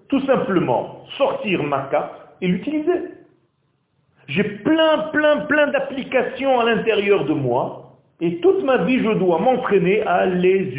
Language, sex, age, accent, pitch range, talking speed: French, male, 40-59, French, 125-195 Hz, 140 wpm